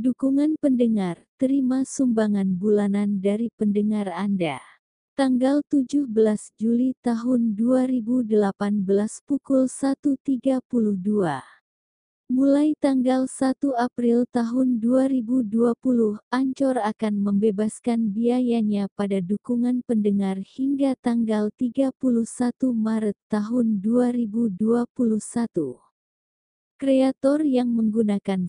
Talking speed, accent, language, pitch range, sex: 80 wpm, American, Indonesian, 210-255 Hz, female